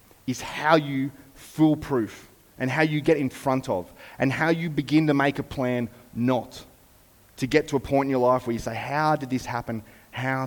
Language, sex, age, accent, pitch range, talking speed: English, male, 30-49, Australian, 100-135 Hz, 205 wpm